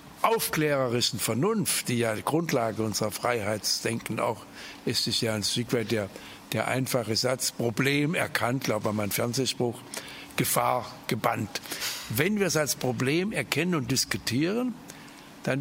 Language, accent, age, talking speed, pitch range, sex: German, German, 60-79, 140 wpm, 115-155 Hz, male